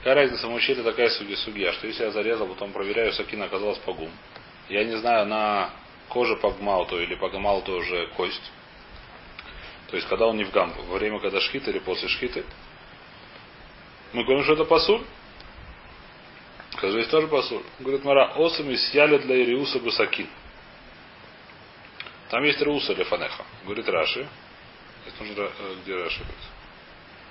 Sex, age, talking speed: male, 30-49, 145 wpm